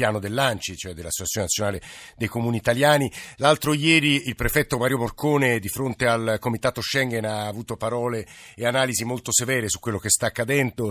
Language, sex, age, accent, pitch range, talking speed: Italian, male, 50-69, native, 110-130 Hz, 175 wpm